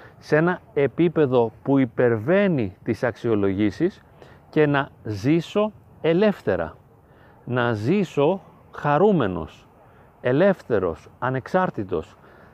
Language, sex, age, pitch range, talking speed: Greek, male, 40-59, 130-180 Hz, 75 wpm